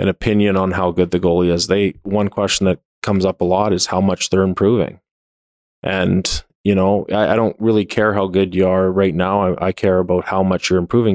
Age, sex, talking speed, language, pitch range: 20-39, male, 230 wpm, English, 90-100 Hz